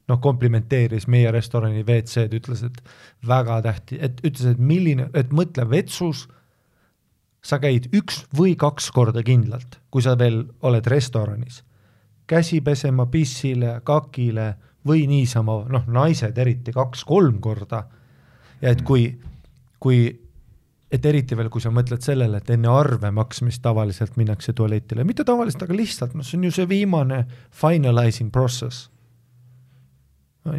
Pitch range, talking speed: 110-130 Hz, 130 wpm